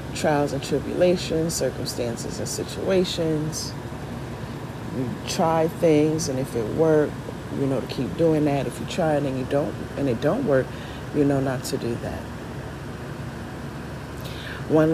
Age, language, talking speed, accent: 40-59, English, 150 wpm, American